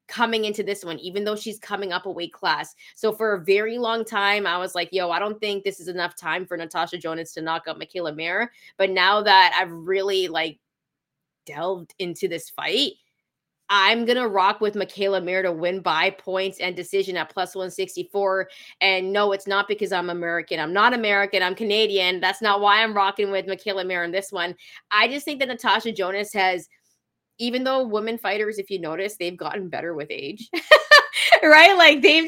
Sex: female